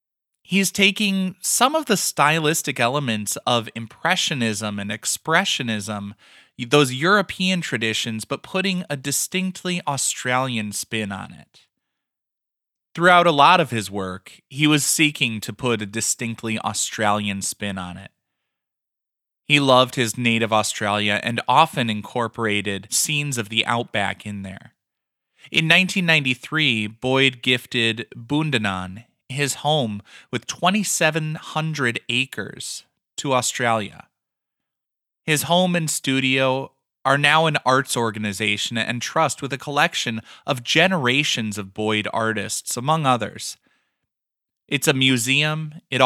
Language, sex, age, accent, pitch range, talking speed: English, male, 20-39, American, 110-155 Hz, 115 wpm